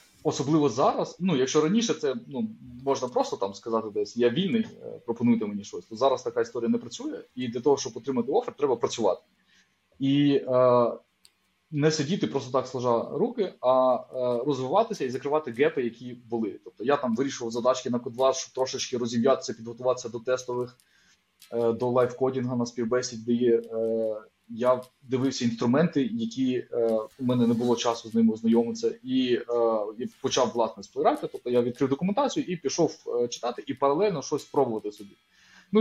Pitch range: 120-160 Hz